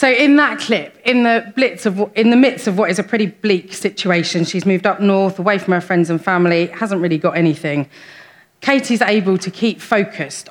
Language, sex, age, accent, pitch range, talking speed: English, female, 30-49, British, 170-220 Hz, 195 wpm